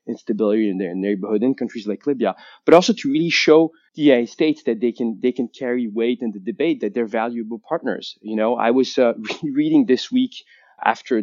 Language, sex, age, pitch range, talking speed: English, male, 20-39, 110-130 Hz, 210 wpm